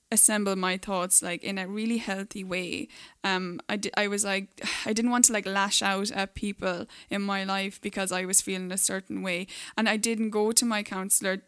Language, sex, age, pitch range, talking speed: English, female, 10-29, 195-230 Hz, 215 wpm